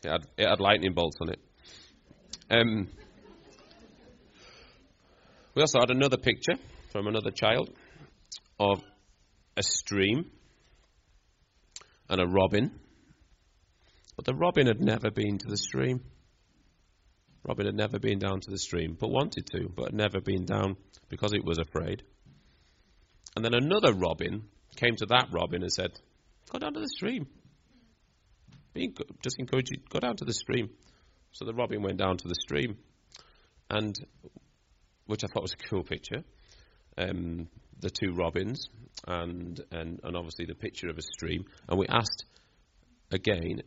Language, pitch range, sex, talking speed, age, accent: English, 85-105 Hz, male, 150 wpm, 30-49, British